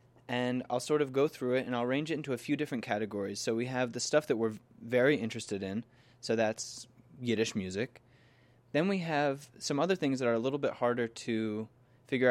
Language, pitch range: English, 110-125 Hz